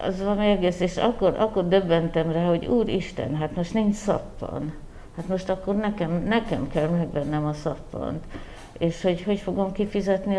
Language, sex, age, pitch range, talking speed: Hungarian, female, 60-79, 150-185 Hz, 160 wpm